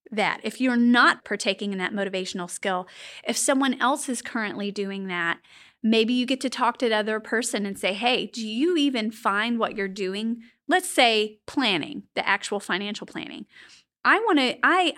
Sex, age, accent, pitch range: female, 30-49, American, 205-255 Hz